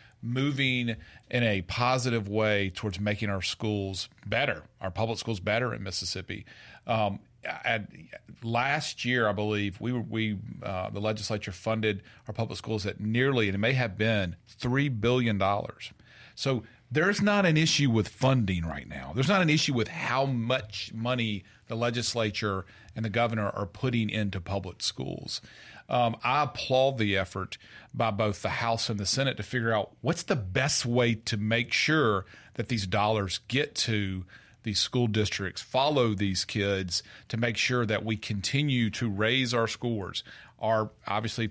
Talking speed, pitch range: 165 wpm, 105-120 Hz